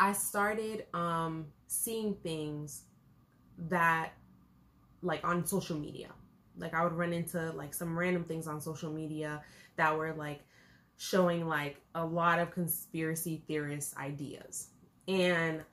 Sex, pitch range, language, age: female, 155-185 Hz, English, 20-39